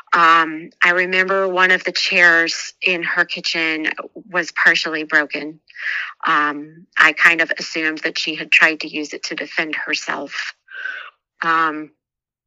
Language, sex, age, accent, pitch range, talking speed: English, female, 40-59, American, 165-190 Hz, 140 wpm